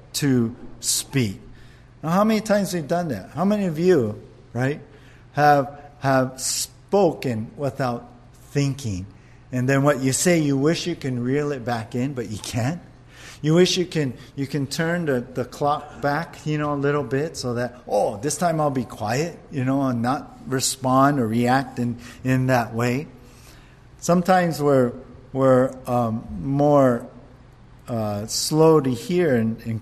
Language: English